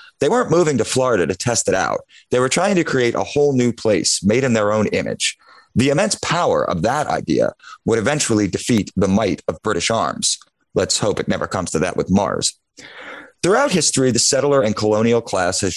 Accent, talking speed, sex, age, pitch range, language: American, 205 wpm, male, 30-49, 105-130 Hz, English